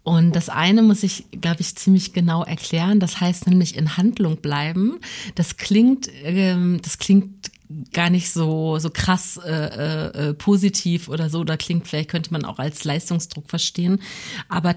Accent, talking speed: German, 165 wpm